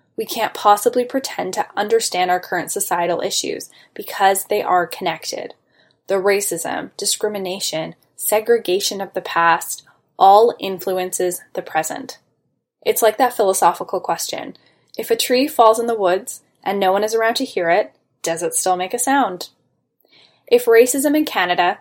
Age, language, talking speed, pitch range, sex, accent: 10-29, English, 150 wpm, 180-250 Hz, female, American